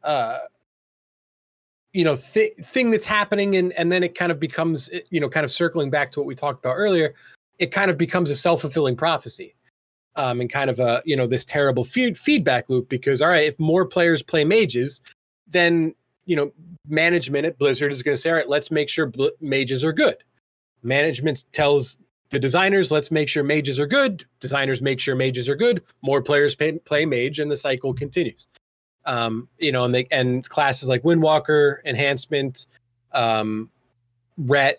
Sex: male